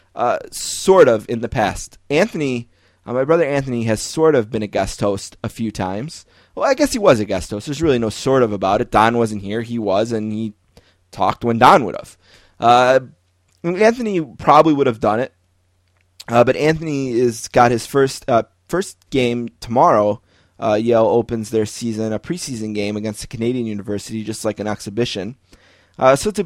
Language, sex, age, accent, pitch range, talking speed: English, male, 20-39, American, 105-135 Hz, 195 wpm